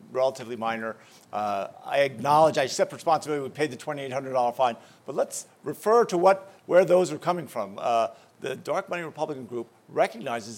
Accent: American